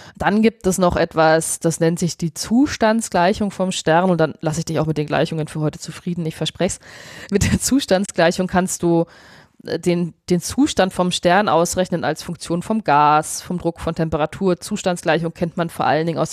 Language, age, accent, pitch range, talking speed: German, 20-39, German, 160-190 Hz, 195 wpm